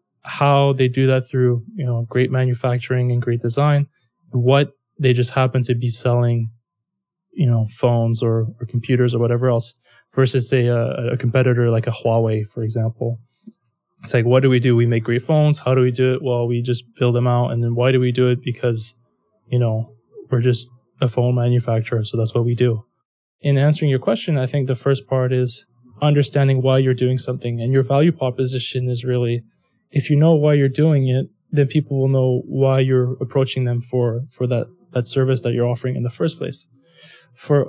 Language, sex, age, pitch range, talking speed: English, male, 20-39, 120-135 Hz, 205 wpm